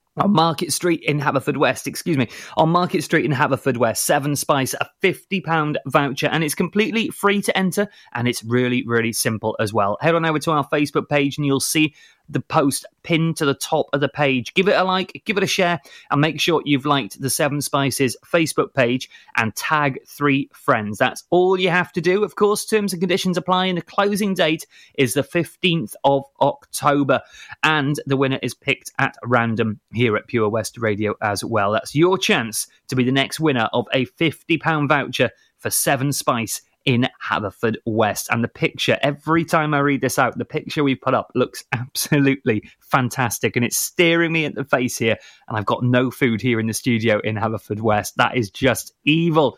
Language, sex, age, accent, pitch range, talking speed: English, male, 30-49, British, 125-170 Hz, 205 wpm